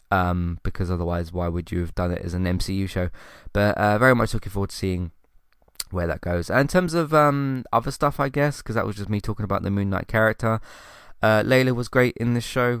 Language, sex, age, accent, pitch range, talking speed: English, male, 20-39, British, 95-115 Hz, 240 wpm